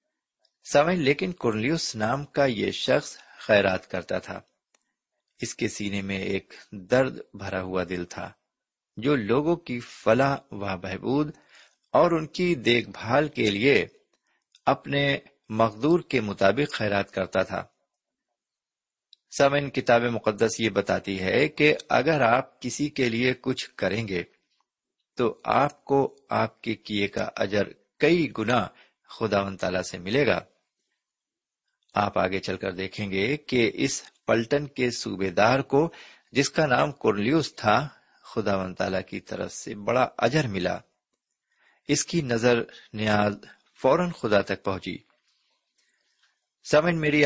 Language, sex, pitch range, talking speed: Urdu, male, 100-140 Hz, 135 wpm